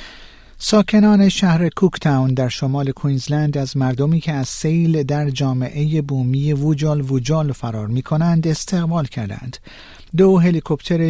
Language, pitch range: Persian, 125-160 Hz